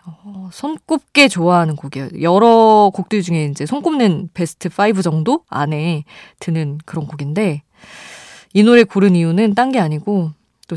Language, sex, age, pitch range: Korean, female, 20-39, 155-215 Hz